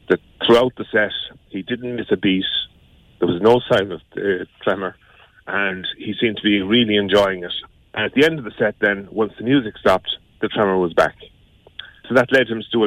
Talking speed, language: 220 wpm, English